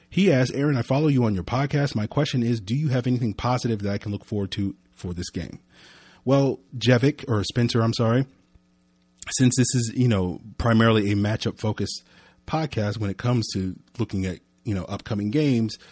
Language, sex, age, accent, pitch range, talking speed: English, male, 30-49, American, 95-115 Hz, 195 wpm